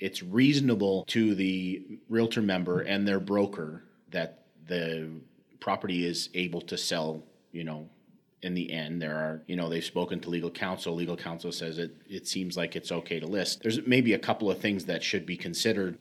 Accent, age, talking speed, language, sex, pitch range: American, 30-49, 190 wpm, English, male, 85-100 Hz